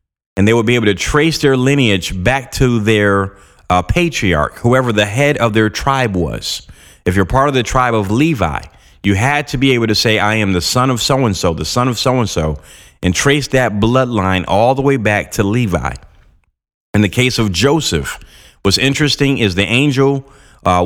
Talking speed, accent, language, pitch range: 195 wpm, American, English, 95-130 Hz